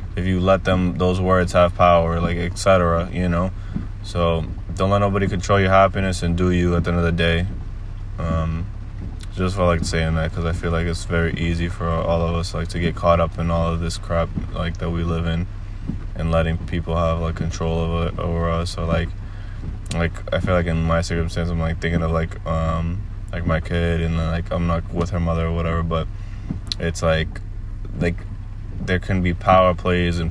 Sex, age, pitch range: male, 20-39, 85-95 Hz